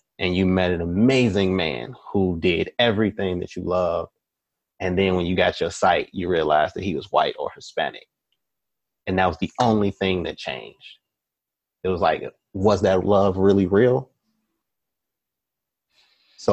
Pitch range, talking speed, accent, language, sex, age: 90-100 Hz, 160 wpm, American, English, male, 30-49